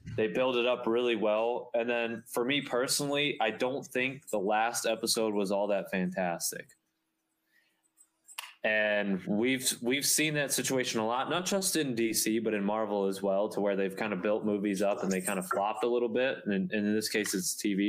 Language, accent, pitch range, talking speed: English, American, 105-125 Hz, 210 wpm